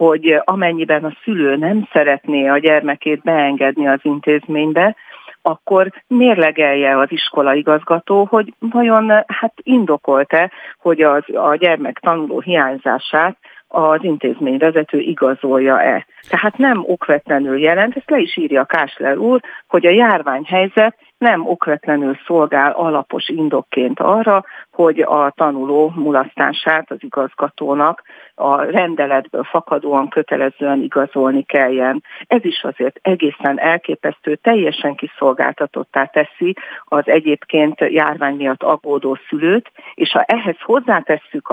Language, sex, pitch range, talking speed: Hungarian, female, 145-205 Hz, 110 wpm